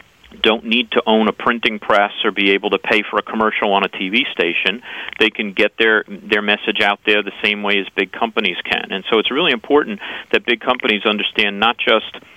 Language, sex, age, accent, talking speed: English, male, 40-59, American, 220 wpm